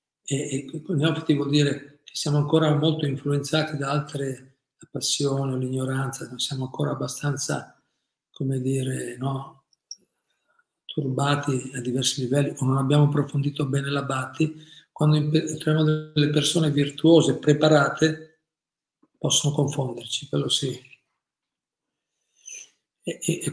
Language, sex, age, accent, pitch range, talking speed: Italian, male, 50-69, native, 135-155 Hz, 120 wpm